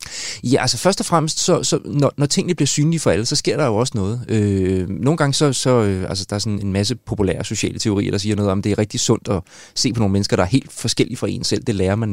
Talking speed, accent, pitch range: 290 wpm, native, 110-145 Hz